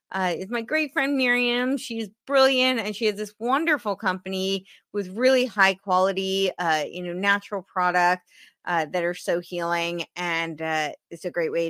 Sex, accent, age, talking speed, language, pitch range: female, American, 30-49, 175 wpm, English, 170-210 Hz